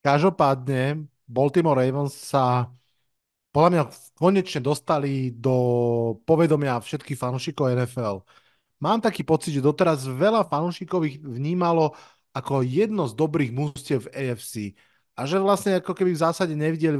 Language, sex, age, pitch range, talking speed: Slovak, male, 30-49, 125-150 Hz, 130 wpm